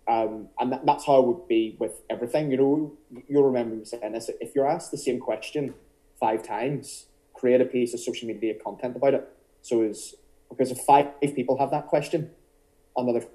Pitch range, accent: 110-140 Hz, British